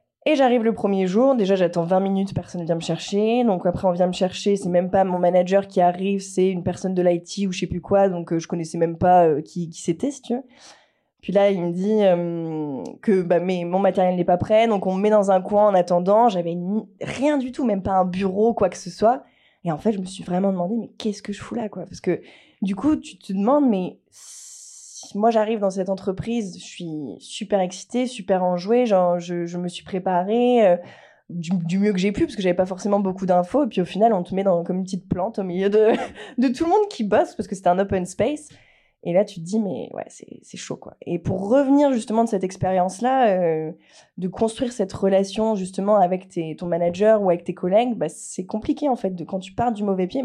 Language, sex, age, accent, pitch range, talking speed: French, female, 20-39, French, 180-220 Hz, 250 wpm